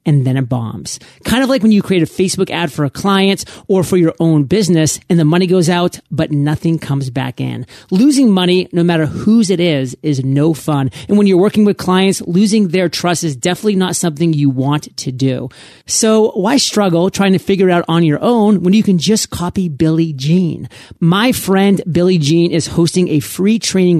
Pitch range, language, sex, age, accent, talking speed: 150-190 Hz, English, male, 30-49, American, 215 wpm